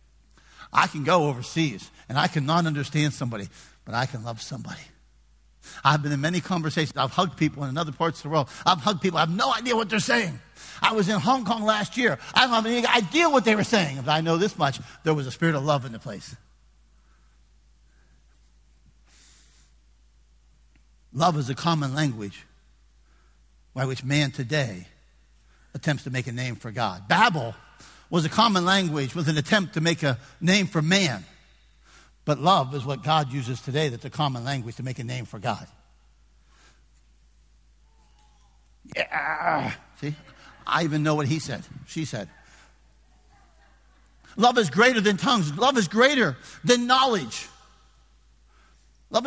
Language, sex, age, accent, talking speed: English, male, 50-69, American, 165 wpm